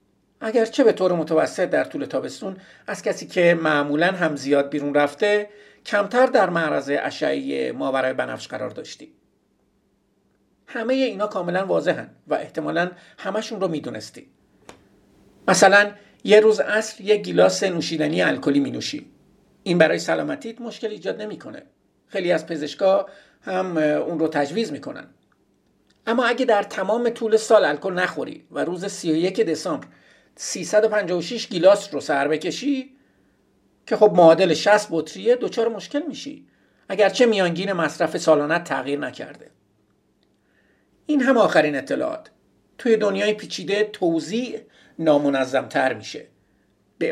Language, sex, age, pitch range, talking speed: Persian, male, 50-69, 160-220 Hz, 130 wpm